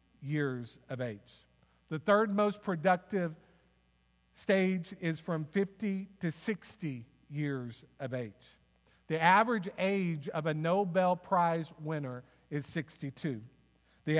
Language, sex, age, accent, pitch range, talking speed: English, male, 50-69, American, 145-195 Hz, 115 wpm